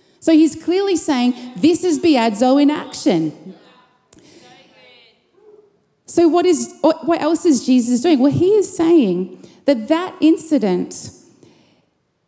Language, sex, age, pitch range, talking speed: English, female, 30-49, 260-340 Hz, 115 wpm